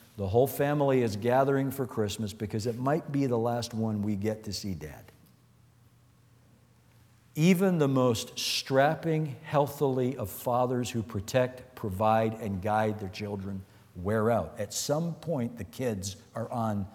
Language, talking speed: English, 150 wpm